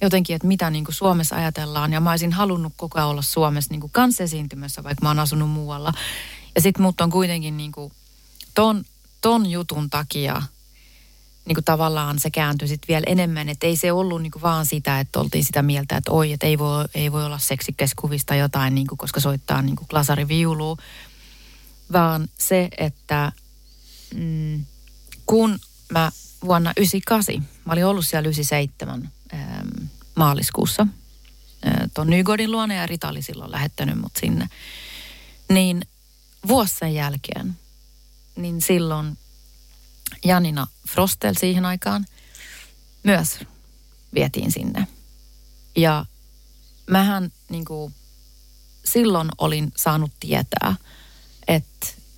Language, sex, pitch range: Finnish, female, 140-170 Hz